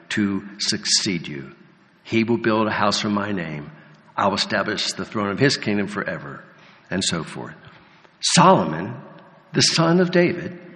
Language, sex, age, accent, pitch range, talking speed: English, male, 60-79, American, 115-155 Hz, 155 wpm